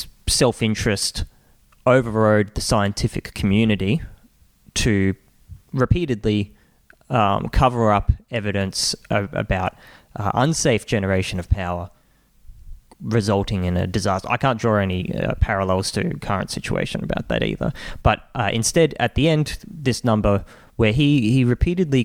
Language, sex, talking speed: English, male, 125 wpm